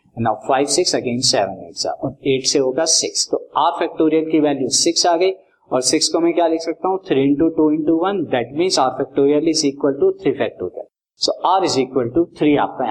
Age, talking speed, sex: 50-69, 110 wpm, male